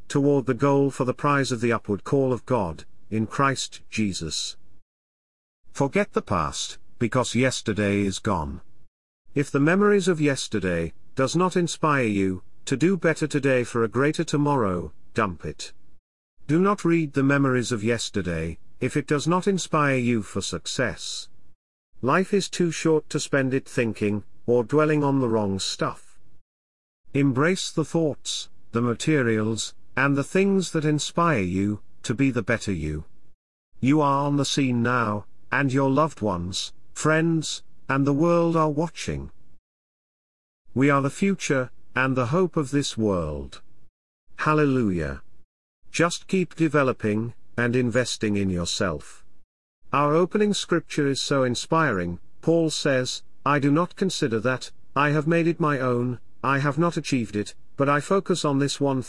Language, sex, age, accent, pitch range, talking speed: English, male, 50-69, British, 105-150 Hz, 150 wpm